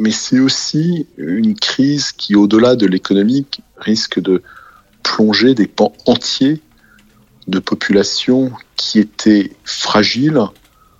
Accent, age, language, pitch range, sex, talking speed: French, 40-59, French, 100-150 Hz, male, 110 wpm